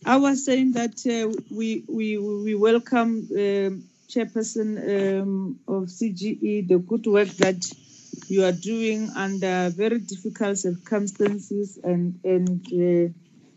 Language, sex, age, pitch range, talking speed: English, female, 40-59, 180-215 Hz, 120 wpm